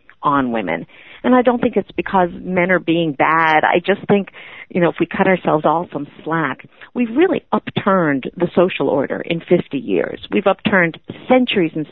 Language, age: English, 50-69